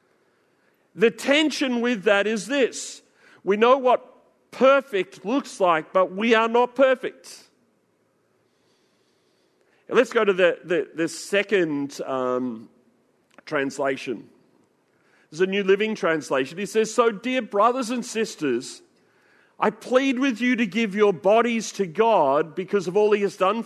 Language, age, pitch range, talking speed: English, 40-59, 185-240 Hz, 135 wpm